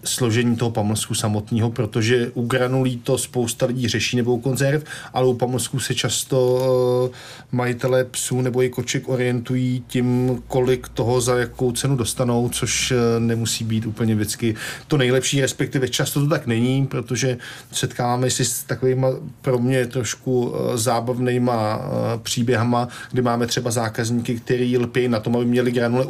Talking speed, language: 150 wpm, Czech